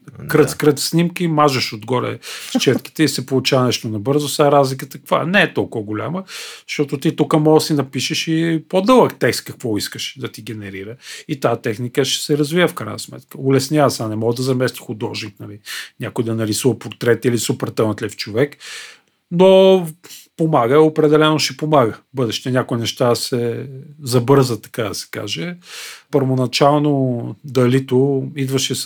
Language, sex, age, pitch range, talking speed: Bulgarian, male, 40-59, 120-145 Hz, 155 wpm